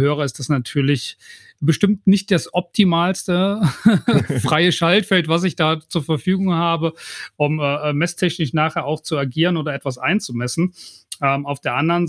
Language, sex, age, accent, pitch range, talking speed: German, male, 40-59, German, 135-165 Hz, 150 wpm